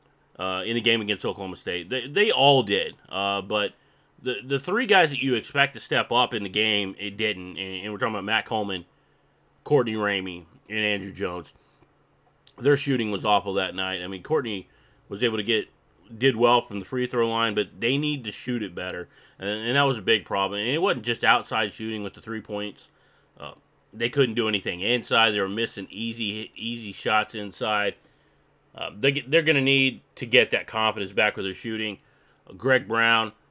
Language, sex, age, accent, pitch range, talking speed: English, male, 30-49, American, 100-130 Hz, 205 wpm